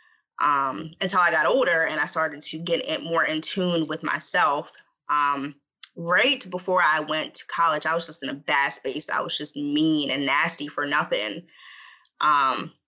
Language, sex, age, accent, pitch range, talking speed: English, female, 20-39, American, 150-180 Hz, 175 wpm